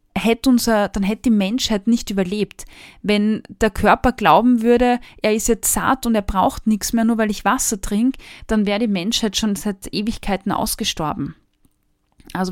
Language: German